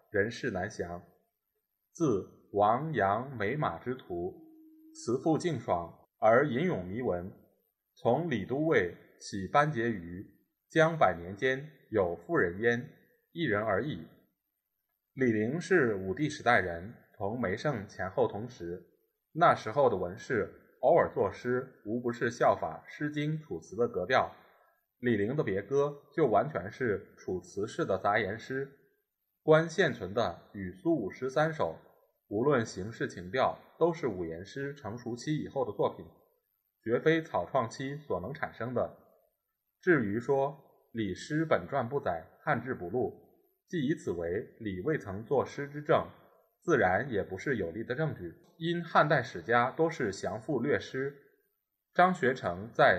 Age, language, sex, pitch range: 20-39, Chinese, male, 110-160 Hz